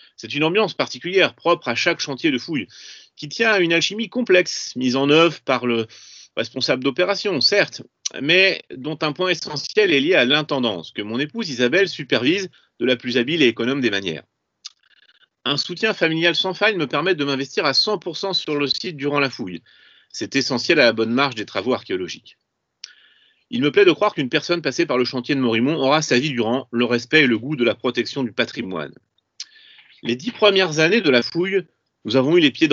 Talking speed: 205 wpm